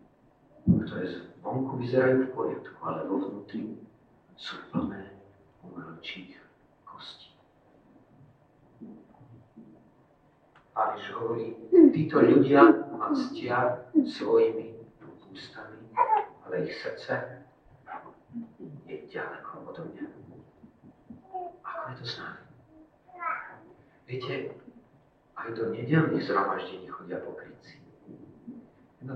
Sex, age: male, 50-69